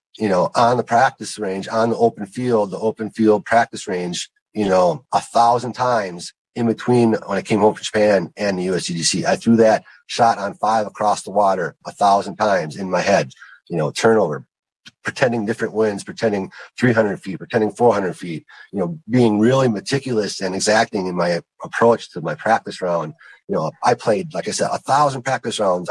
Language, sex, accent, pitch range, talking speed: English, male, American, 95-115 Hz, 190 wpm